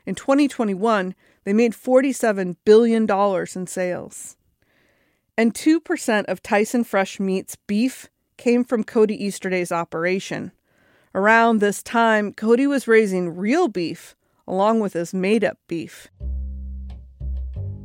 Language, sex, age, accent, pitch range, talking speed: English, female, 40-59, American, 175-230 Hz, 110 wpm